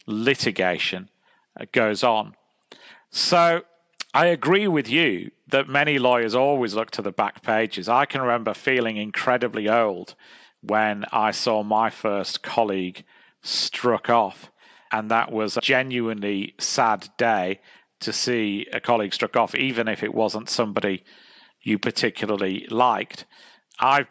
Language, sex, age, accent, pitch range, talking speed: English, male, 40-59, British, 105-130 Hz, 130 wpm